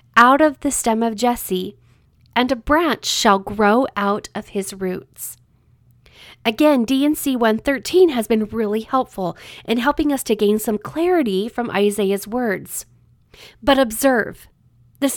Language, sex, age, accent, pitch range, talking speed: English, female, 40-59, American, 185-255 Hz, 140 wpm